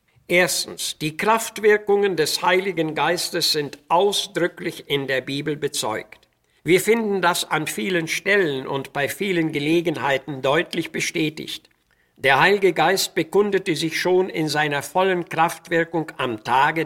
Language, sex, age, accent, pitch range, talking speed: German, male, 60-79, German, 145-185 Hz, 130 wpm